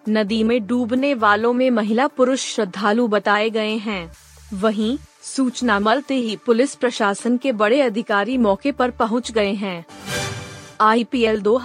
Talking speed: 135 wpm